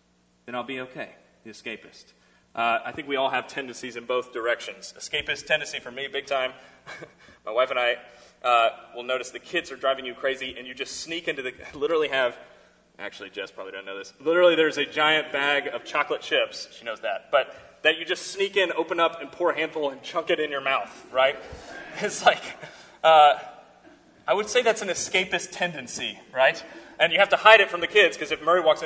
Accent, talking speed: American, 215 wpm